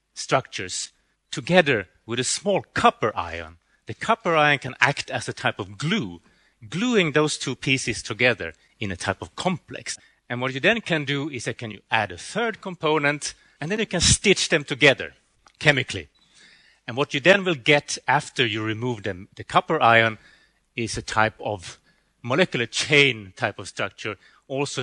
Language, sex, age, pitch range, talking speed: English, male, 30-49, 110-150 Hz, 170 wpm